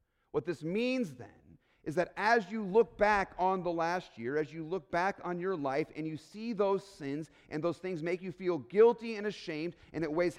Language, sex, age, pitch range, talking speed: English, male, 40-59, 150-205 Hz, 220 wpm